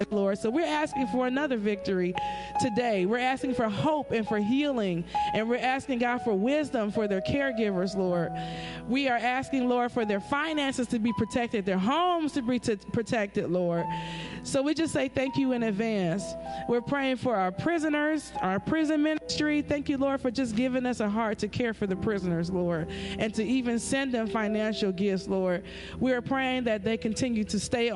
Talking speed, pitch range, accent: 190 wpm, 195-265 Hz, American